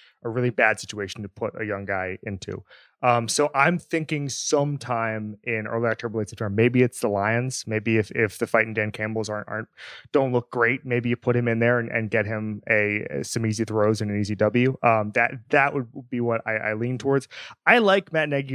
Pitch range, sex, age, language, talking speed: 105-125 Hz, male, 20-39, English, 220 wpm